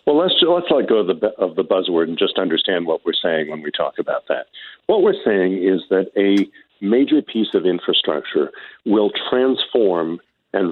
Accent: American